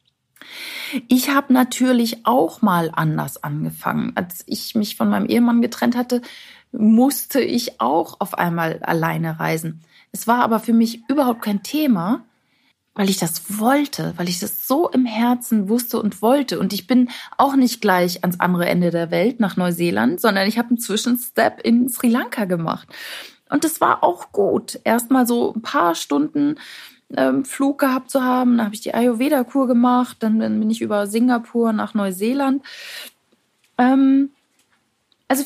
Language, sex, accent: German, female, German